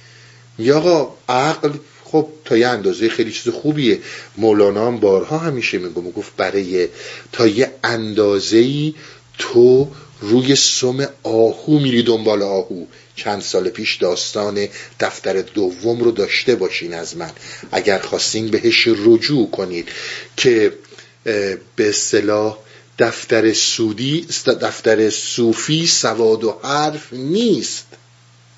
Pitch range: 115-160 Hz